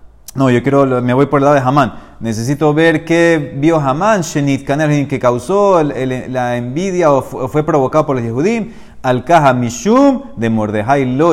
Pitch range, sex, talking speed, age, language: 125-170 Hz, male, 185 wpm, 30-49, Spanish